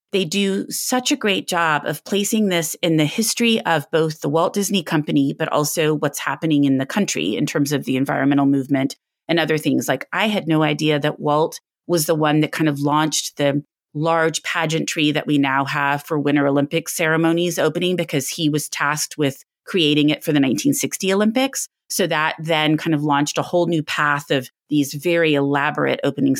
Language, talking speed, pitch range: English, 195 wpm, 145-175 Hz